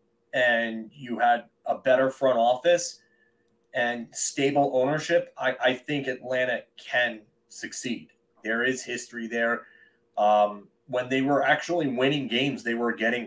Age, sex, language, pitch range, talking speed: 30-49, male, English, 115-130 Hz, 135 wpm